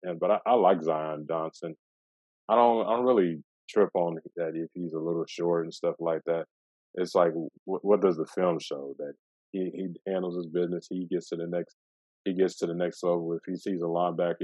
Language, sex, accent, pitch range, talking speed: English, male, American, 80-95 Hz, 225 wpm